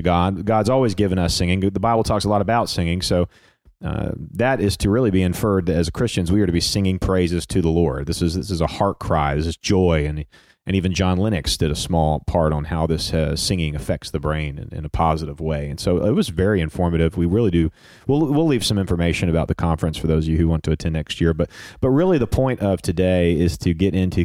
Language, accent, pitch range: English, American, 85-115 Hz